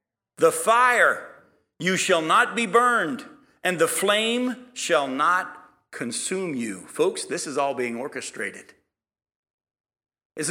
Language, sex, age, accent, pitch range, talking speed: English, male, 50-69, American, 160-215 Hz, 120 wpm